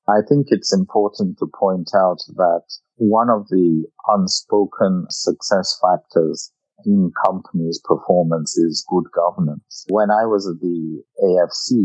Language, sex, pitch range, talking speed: English, male, 80-100 Hz, 130 wpm